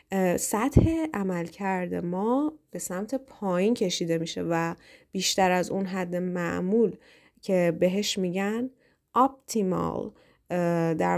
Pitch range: 175-215 Hz